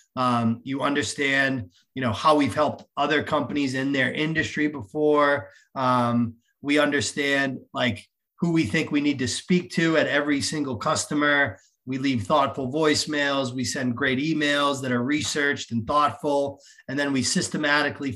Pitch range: 125-145 Hz